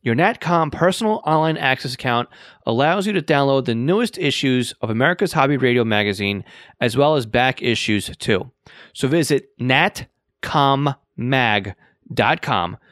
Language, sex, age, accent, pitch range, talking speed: English, male, 30-49, American, 105-140 Hz, 125 wpm